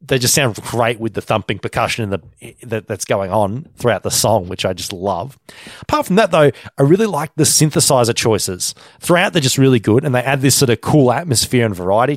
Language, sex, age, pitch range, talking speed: English, male, 30-49, 110-145 Hz, 220 wpm